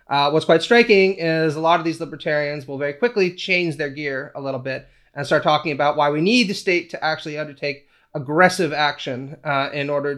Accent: American